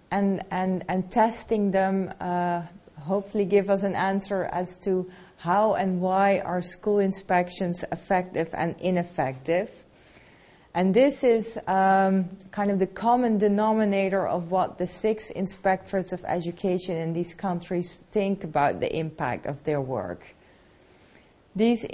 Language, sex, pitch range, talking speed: English, female, 180-210 Hz, 135 wpm